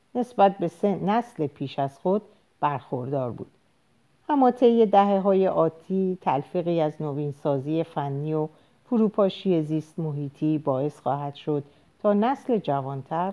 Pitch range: 140-185 Hz